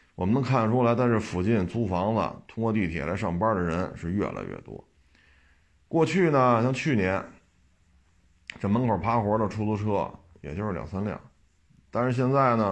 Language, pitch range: Chinese, 85-120 Hz